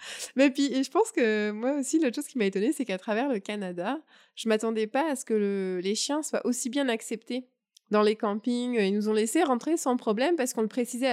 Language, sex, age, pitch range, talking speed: French, female, 20-39, 195-255 Hz, 245 wpm